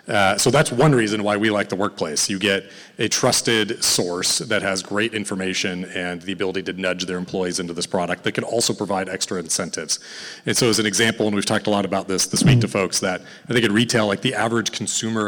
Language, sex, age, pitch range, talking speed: English, male, 30-49, 100-125 Hz, 235 wpm